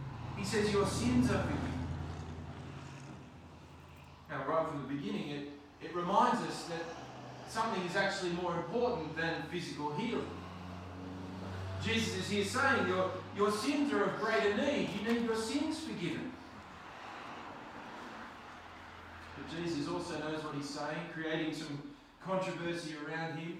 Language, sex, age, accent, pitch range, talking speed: English, male, 40-59, Australian, 140-210 Hz, 130 wpm